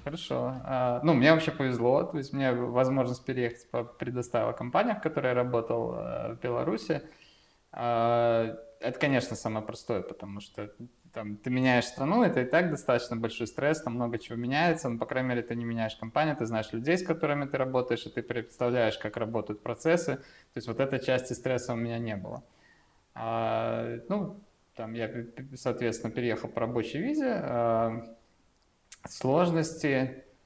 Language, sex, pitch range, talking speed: Russian, male, 115-135 Hz, 155 wpm